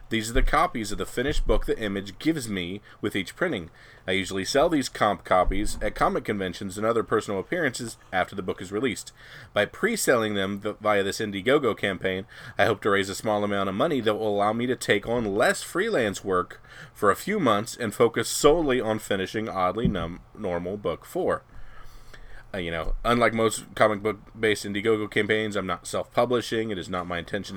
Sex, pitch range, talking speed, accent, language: male, 95-115 Hz, 190 wpm, American, English